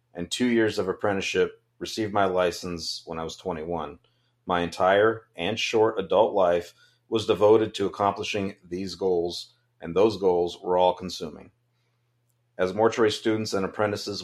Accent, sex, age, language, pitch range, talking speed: American, male, 40-59, English, 90-115 Hz, 145 wpm